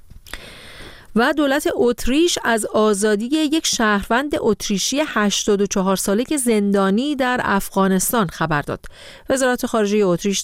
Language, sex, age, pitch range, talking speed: Persian, female, 40-59, 165-230 Hz, 110 wpm